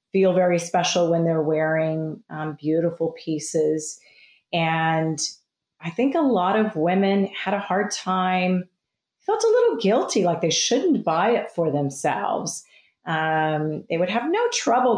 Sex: female